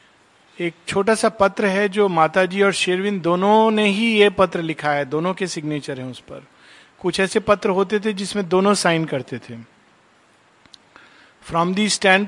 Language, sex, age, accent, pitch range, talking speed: Hindi, male, 50-69, native, 170-215 Hz, 170 wpm